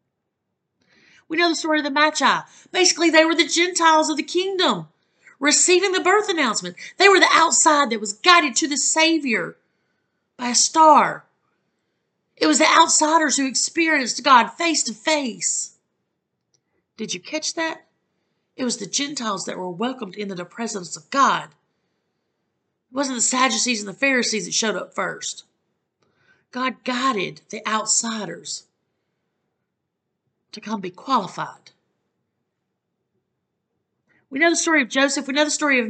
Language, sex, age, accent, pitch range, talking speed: English, female, 40-59, American, 225-315 Hz, 145 wpm